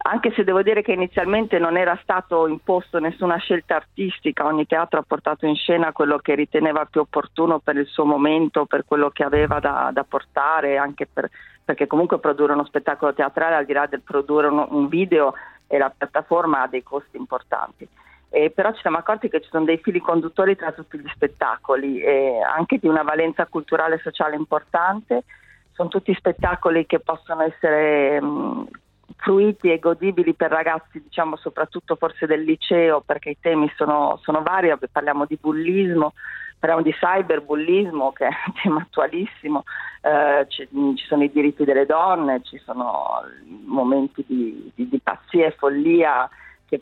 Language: Italian